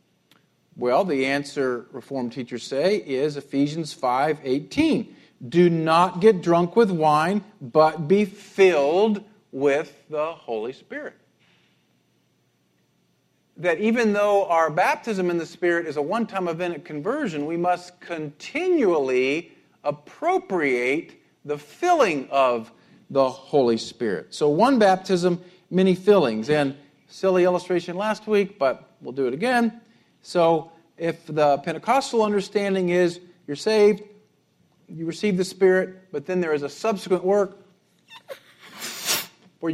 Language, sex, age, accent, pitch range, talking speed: English, male, 50-69, American, 150-200 Hz, 120 wpm